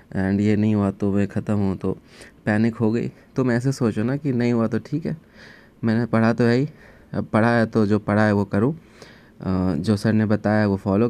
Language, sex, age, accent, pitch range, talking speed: Hindi, male, 20-39, native, 110-130 Hz, 225 wpm